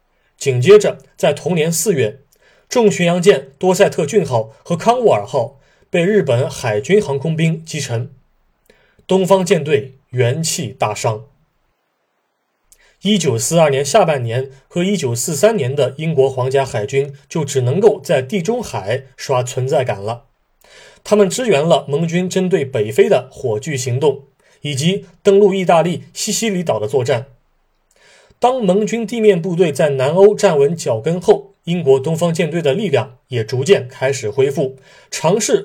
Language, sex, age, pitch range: Chinese, male, 30-49, 135-200 Hz